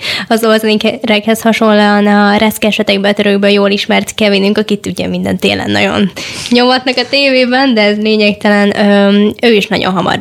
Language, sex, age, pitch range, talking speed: Hungarian, female, 10-29, 200-220 Hz, 145 wpm